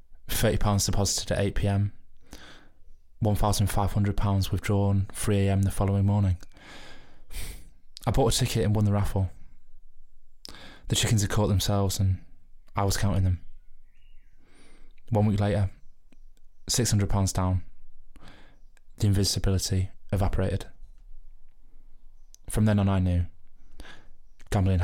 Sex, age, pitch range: male, 20-39, 90-110 Hz